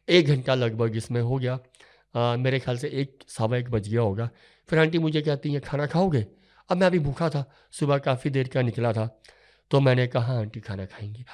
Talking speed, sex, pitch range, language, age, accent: 215 wpm, male, 115-145 Hz, Hindi, 50-69, native